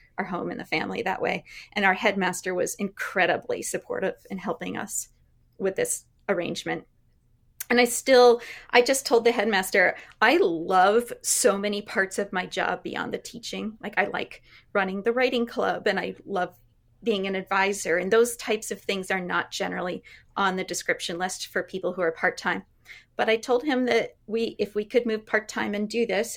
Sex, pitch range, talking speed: female, 190-235 Hz, 185 wpm